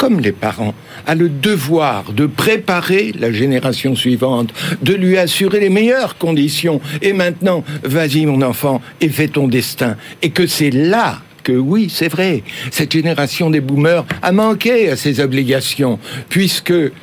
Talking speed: 155 wpm